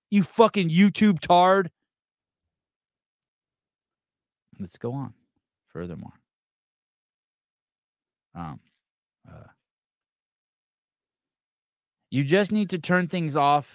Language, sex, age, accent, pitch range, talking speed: English, male, 30-49, American, 85-130 Hz, 70 wpm